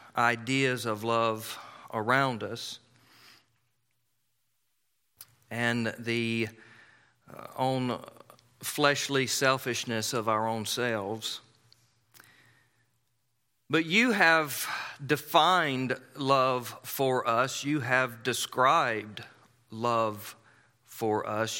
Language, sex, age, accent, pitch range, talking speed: English, male, 40-59, American, 115-130 Hz, 75 wpm